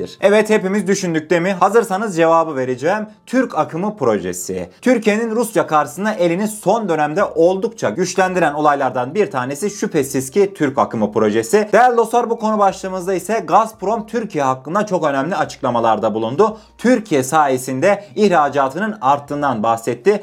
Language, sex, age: Turkish, male, 30-49